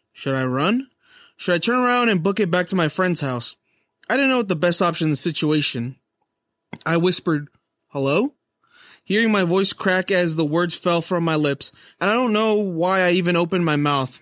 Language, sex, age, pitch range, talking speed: English, male, 20-39, 150-185 Hz, 205 wpm